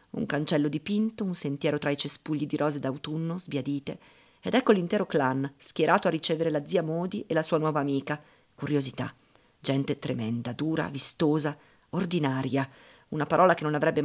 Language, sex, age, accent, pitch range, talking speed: Italian, female, 40-59, native, 140-170 Hz, 160 wpm